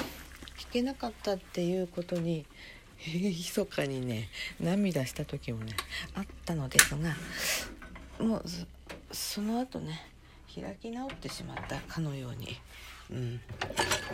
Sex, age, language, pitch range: female, 40-59, Japanese, 125-205 Hz